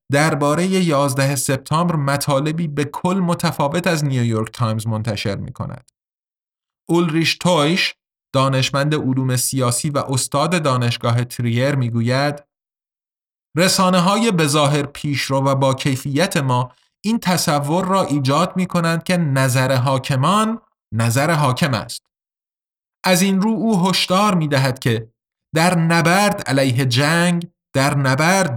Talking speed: 130 wpm